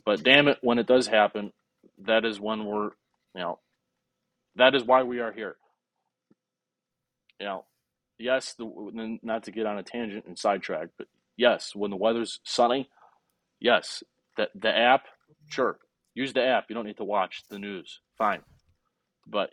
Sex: male